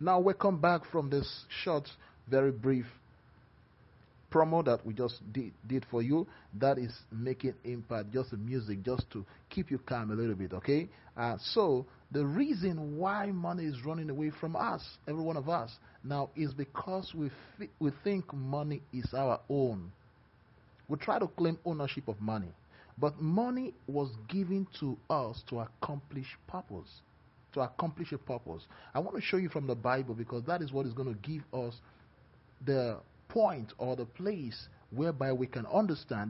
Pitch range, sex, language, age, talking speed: 115-155 Hz, male, English, 40-59, 175 wpm